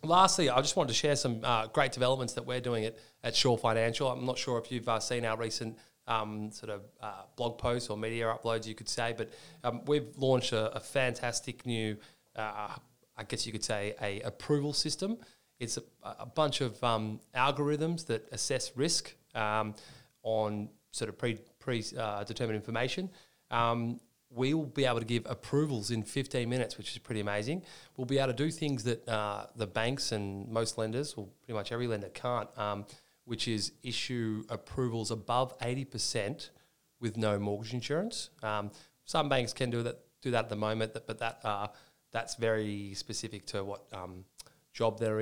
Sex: male